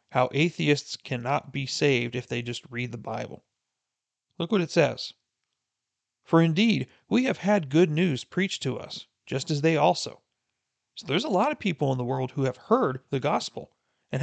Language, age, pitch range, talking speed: English, 40-59, 125-165 Hz, 185 wpm